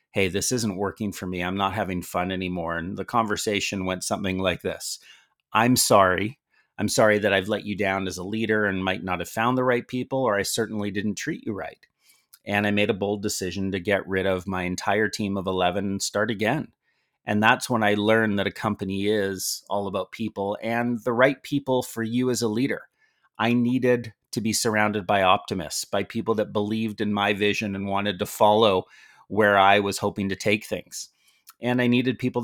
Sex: male